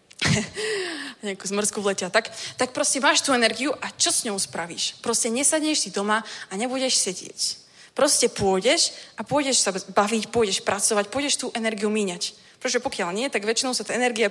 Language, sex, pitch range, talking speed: Czech, female, 215-265 Hz, 170 wpm